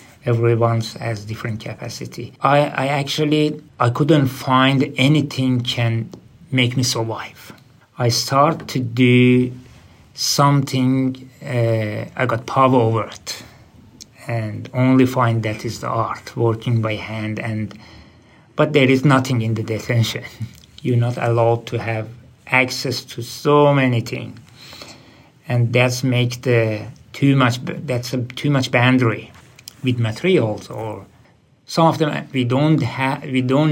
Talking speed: 135 wpm